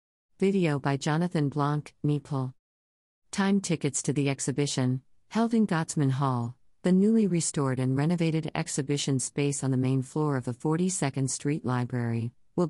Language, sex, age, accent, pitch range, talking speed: English, female, 50-69, American, 130-160 Hz, 145 wpm